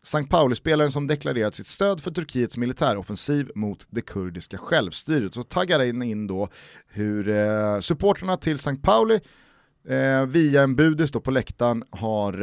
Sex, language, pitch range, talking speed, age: male, Swedish, 105-155 Hz, 155 wpm, 30-49